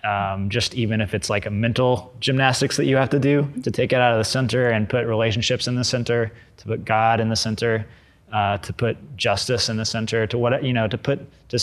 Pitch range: 100-120 Hz